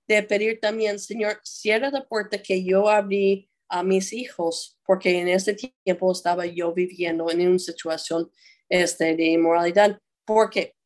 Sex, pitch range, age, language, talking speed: female, 175-215 Hz, 20-39, Spanish, 150 wpm